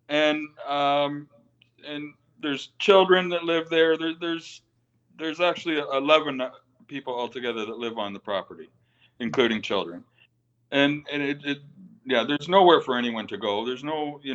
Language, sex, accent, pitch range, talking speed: English, male, American, 120-150 Hz, 150 wpm